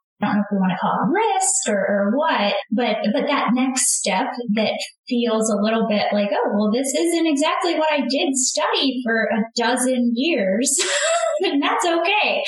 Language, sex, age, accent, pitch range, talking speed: English, female, 10-29, American, 210-270 Hz, 190 wpm